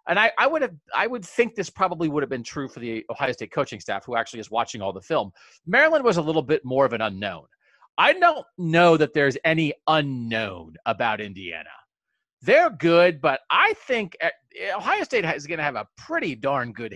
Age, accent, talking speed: 30-49, American, 220 wpm